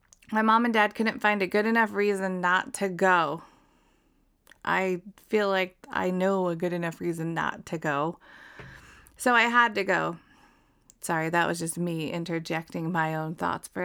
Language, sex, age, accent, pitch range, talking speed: English, female, 30-49, American, 185-225 Hz, 175 wpm